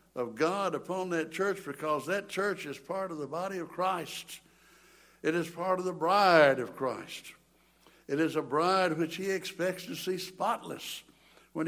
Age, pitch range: 60-79, 145-185 Hz